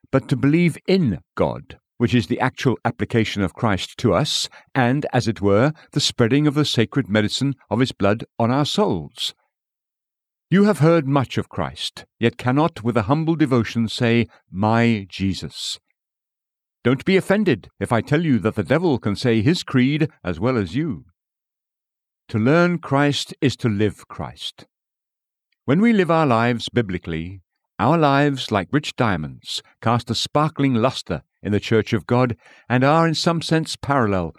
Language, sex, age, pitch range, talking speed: English, male, 60-79, 110-150 Hz, 170 wpm